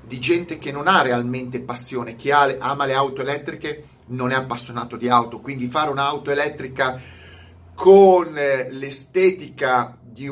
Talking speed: 140 wpm